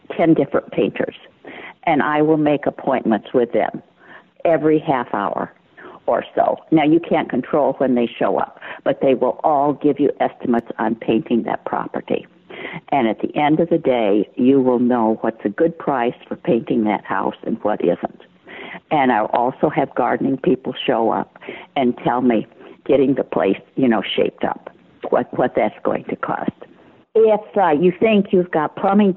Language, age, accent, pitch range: English, 60-79, American, 145-195 Hz